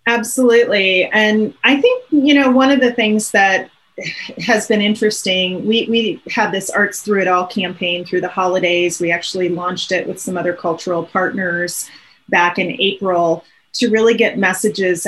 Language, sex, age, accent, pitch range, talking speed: English, female, 30-49, American, 180-220 Hz, 165 wpm